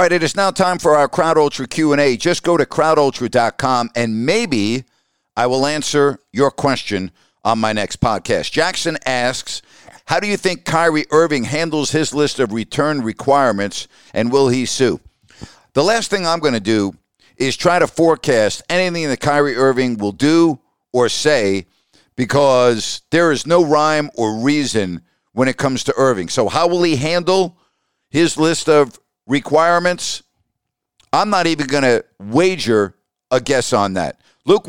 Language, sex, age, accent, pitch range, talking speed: English, male, 50-69, American, 125-165 Hz, 165 wpm